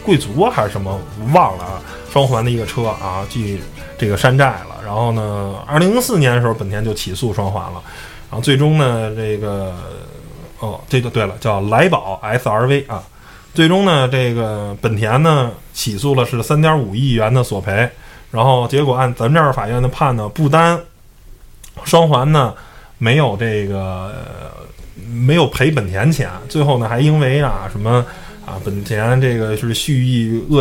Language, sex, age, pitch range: Chinese, male, 20-39, 105-140 Hz